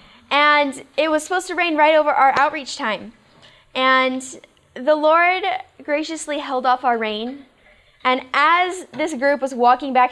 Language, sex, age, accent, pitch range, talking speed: English, female, 10-29, American, 235-305 Hz, 155 wpm